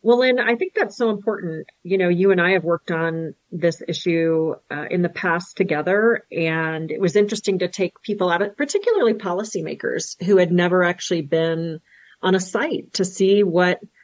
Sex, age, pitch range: female, 40-59, 165-205 Hz